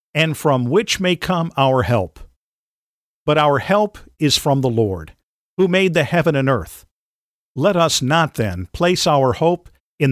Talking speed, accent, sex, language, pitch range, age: 165 wpm, American, male, English, 115-160 Hz, 50-69